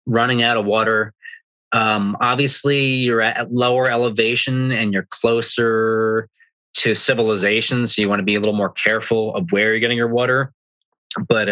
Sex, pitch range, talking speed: male, 100-120 Hz, 160 wpm